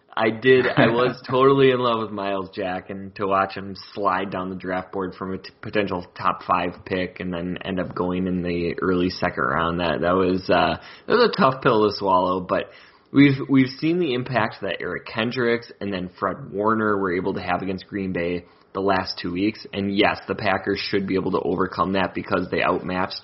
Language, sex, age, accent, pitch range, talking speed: English, male, 20-39, American, 90-115 Hz, 215 wpm